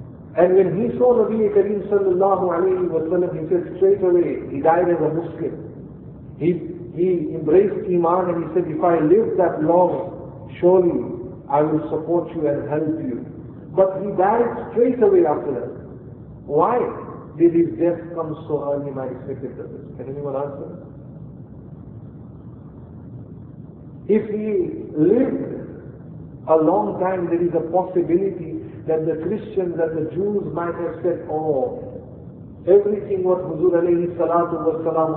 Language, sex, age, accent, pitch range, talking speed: English, male, 50-69, Indian, 155-185 Hz, 140 wpm